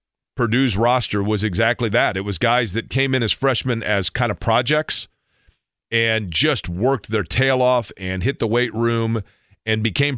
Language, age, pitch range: English, 40-59, 105-130 Hz